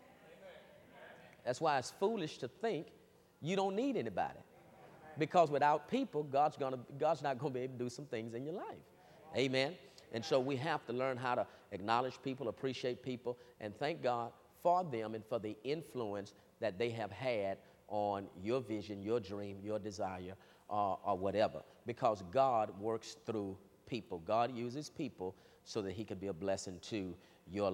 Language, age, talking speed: English, 40-59, 175 wpm